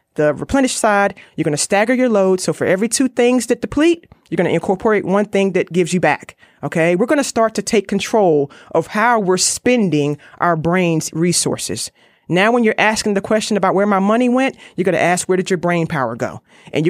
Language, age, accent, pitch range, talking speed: English, 30-49, American, 160-205 Hz, 225 wpm